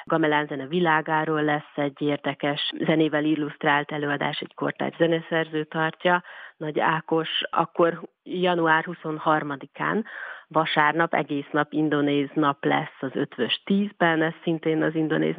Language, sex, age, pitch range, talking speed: Hungarian, female, 30-49, 145-165 Hz, 115 wpm